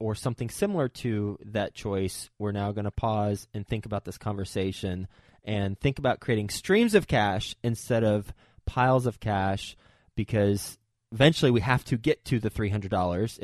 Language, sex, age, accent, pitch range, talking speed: English, male, 20-39, American, 95-115 Hz, 165 wpm